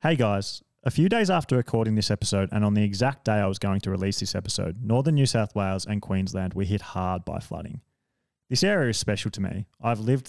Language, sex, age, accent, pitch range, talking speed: English, male, 20-39, Australian, 100-120 Hz, 235 wpm